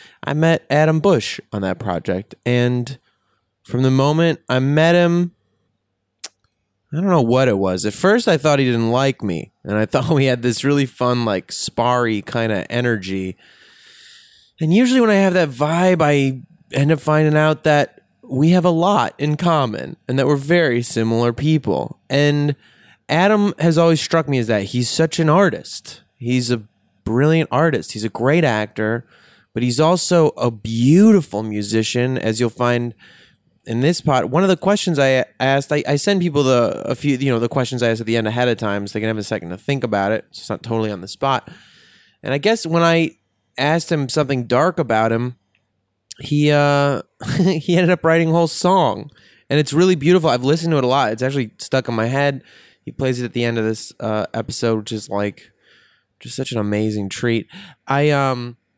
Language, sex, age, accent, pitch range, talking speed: English, male, 20-39, American, 115-160 Hz, 200 wpm